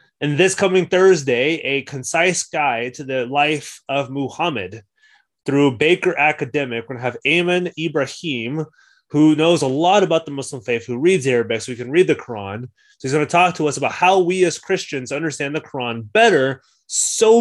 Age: 30-49